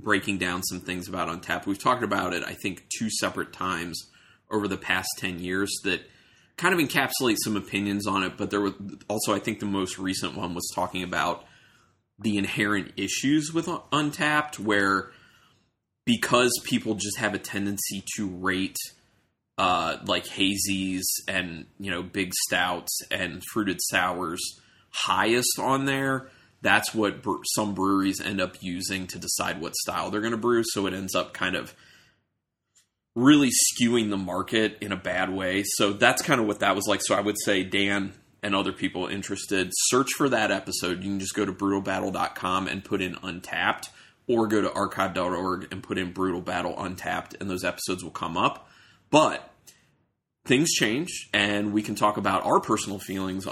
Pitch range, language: 95-105 Hz, English